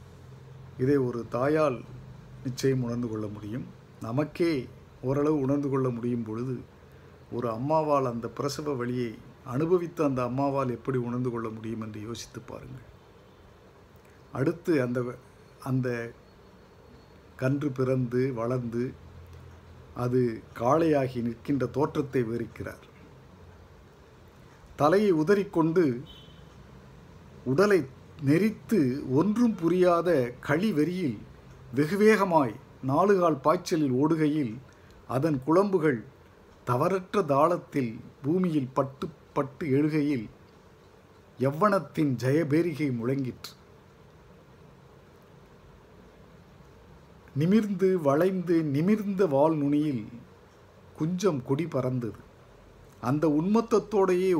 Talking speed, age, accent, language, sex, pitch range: 80 wpm, 50-69, native, Tamil, male, 120-155 Hz